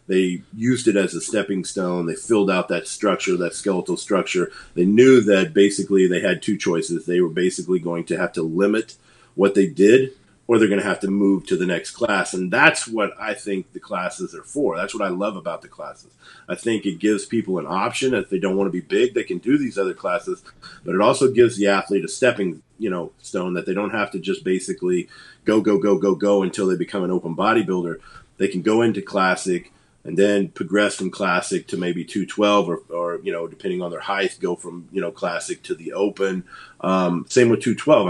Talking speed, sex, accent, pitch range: 225 wpm, male, American, 95-130 Hz